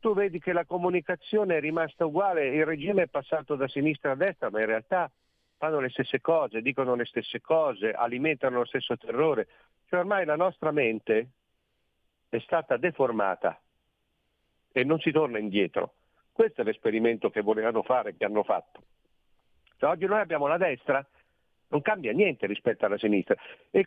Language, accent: Italian, native